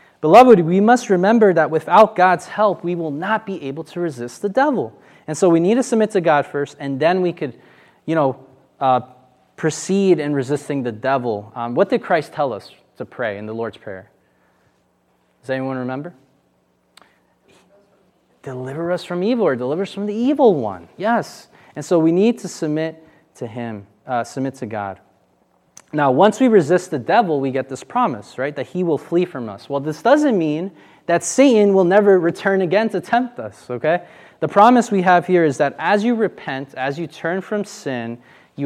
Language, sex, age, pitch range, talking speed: English, male, 20-39, 130-185 Hz, 190 wpm